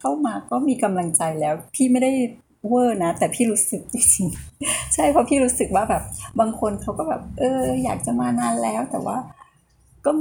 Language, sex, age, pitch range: Thai, female, 20-39, 175-235 Hz